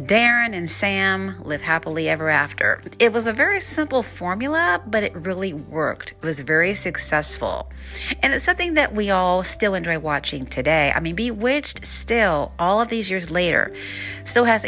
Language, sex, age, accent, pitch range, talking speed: English, female, 40-59, American, 150-205 Hz, 170 wpm